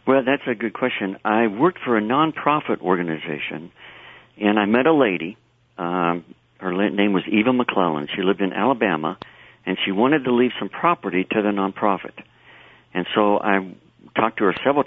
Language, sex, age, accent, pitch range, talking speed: English, male, 60-79, American, 90-110 Hz, 175 wpm